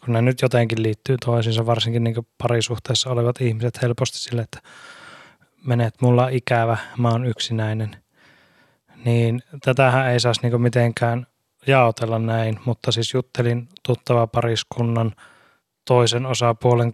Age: 20-39